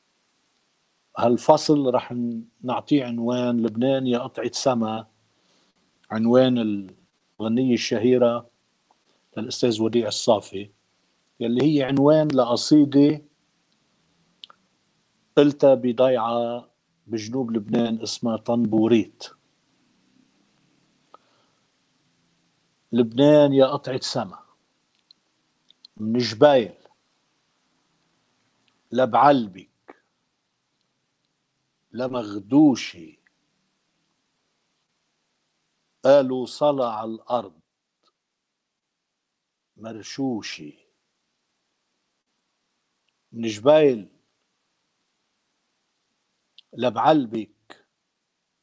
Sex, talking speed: male, 50 wpm